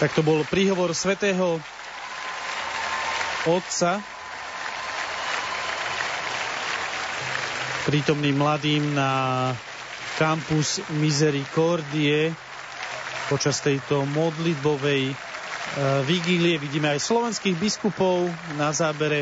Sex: male